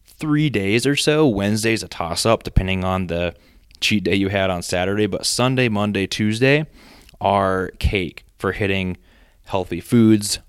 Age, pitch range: 20-39, 90-105 Hz